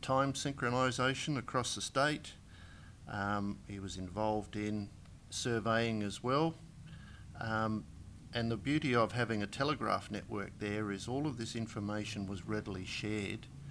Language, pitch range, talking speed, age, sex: English, 100-120 Hz, 135 wpm, 50-69, male